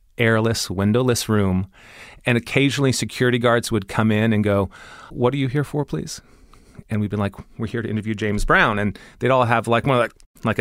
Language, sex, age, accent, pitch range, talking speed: English, male, 30-49, American, 100-125 Hz, 210 wpm